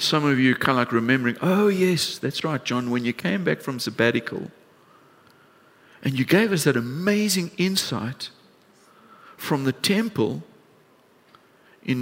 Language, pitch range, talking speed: English, 130-180 Hz, 145 wpm